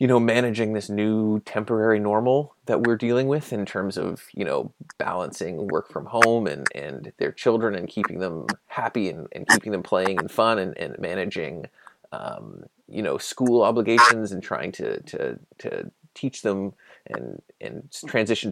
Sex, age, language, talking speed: male, 30-49, English, 170 wpm